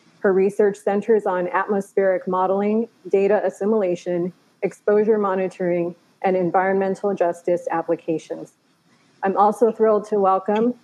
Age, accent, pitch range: 30-49, American, 175-205 Hz